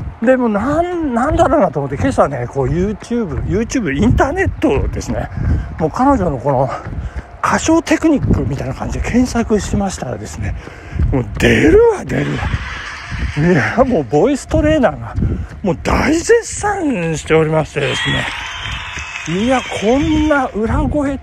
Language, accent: Japanese, native